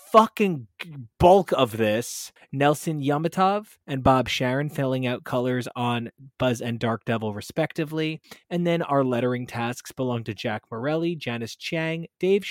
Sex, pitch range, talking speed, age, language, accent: male, 120-160 Hz, 145 wpm, 20-39, English, American